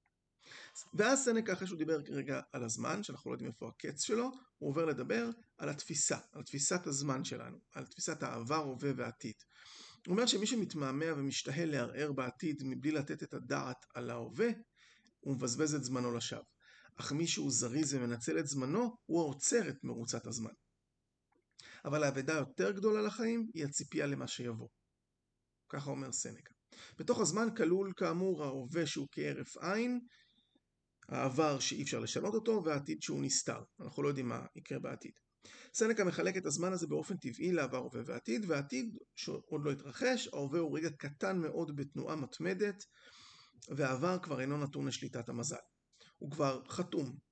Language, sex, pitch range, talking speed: Hebrew, male, 135-205 Hz, 155 wpm